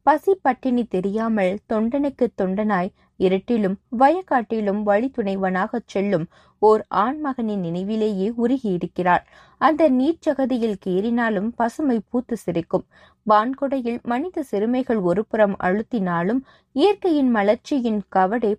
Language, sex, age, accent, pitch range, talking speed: Tamil, female, 20-39, native, 195-260 Hz, 85 wpm